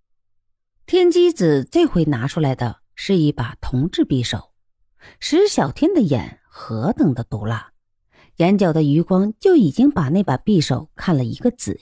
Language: Chinese